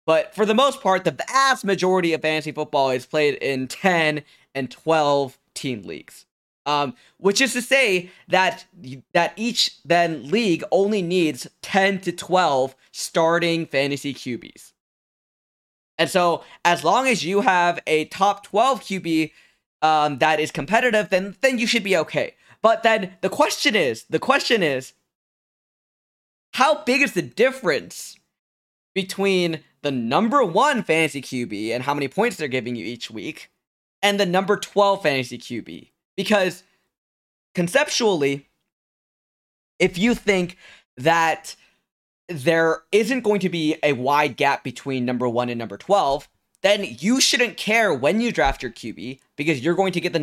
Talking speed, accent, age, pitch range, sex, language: 150 wpm, American, 20-39, 145-200 Hz, male, English